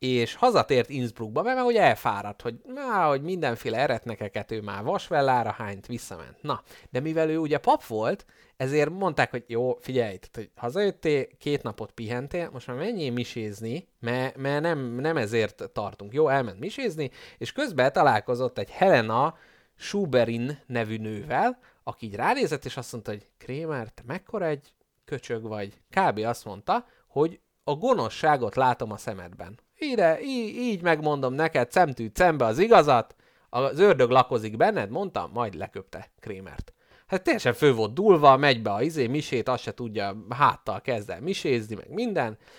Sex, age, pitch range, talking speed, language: male, 30-49, 115-155 Hz, 160 wpm, Hungarian